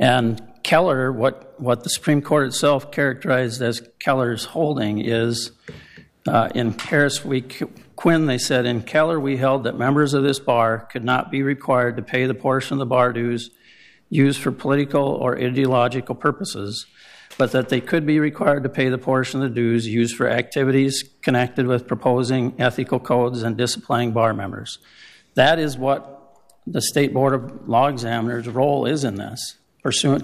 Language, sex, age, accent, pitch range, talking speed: English, male, 60-79, American, 120-140 Hz, 170 wpm